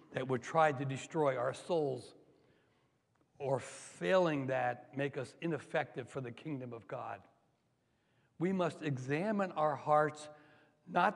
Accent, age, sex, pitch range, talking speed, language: American, 60-79, male, 140-175 Hz, 130 wpm, English